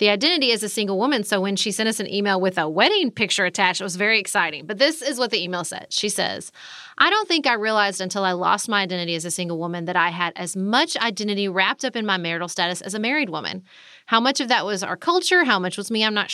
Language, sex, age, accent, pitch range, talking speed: English, female, 30-49, American, 185-230 Hz, 270 wpm